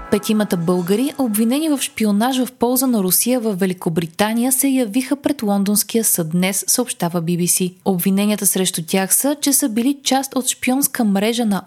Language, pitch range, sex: Bulgarian, 195-265 Hz, female